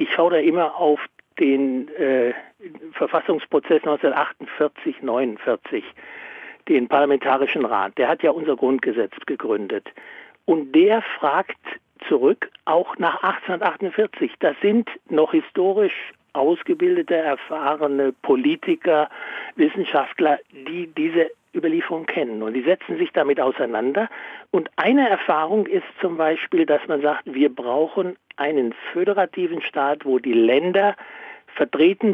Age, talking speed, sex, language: 60-79, 115 wpm, male, German